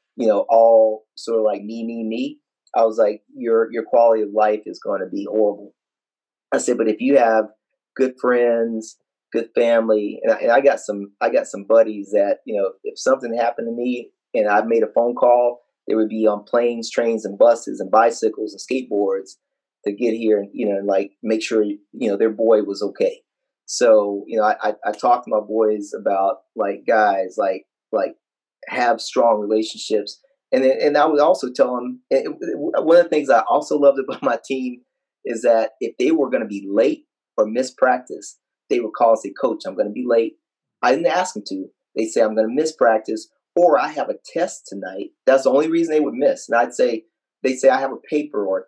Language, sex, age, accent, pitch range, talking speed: English, male, 30-49, American, 110-150 Hz, 220 wpm